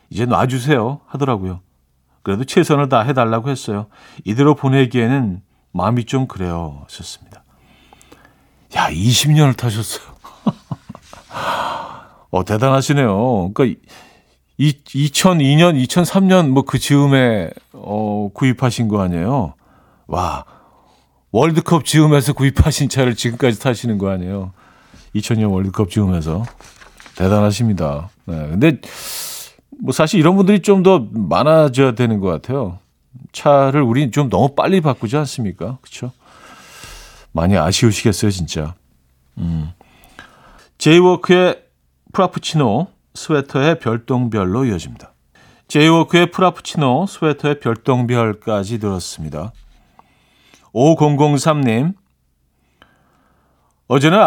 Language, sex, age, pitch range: Korean, male, 50-69, 95-145 Hz